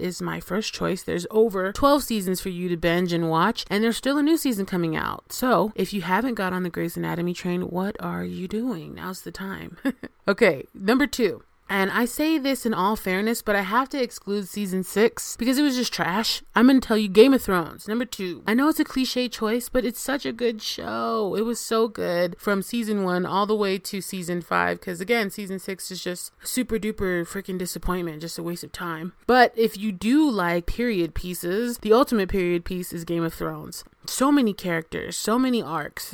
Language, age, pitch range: English, 30-49, 180-240 Hz